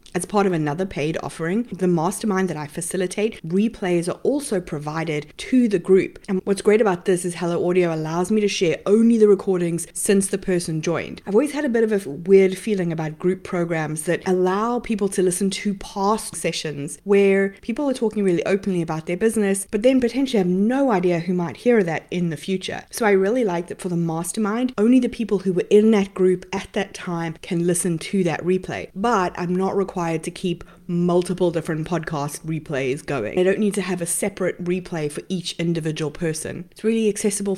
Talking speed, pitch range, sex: 205 wpm, 170-200 Hz, female